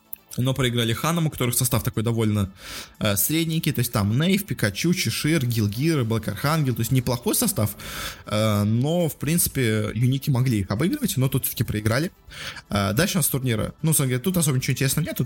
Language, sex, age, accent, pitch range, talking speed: Russian, male, 20-39, native, 115-150 Hz, 180 wpm